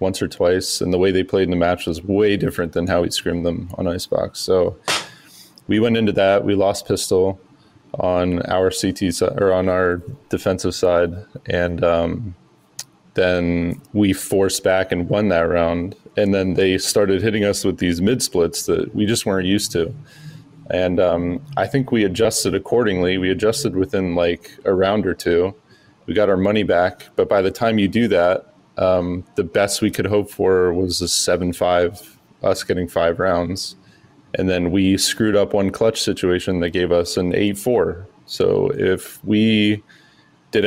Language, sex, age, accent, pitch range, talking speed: English, male, 20-39, American, 90-105 Hz, 180 wpm